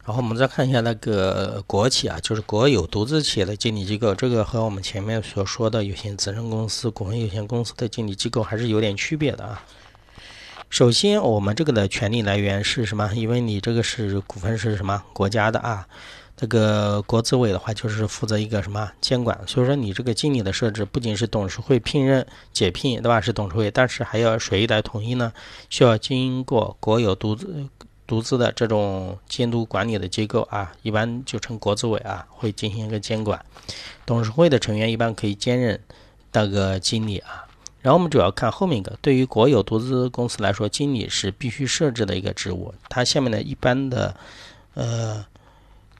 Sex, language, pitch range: male, Chinese, 105-120 Hz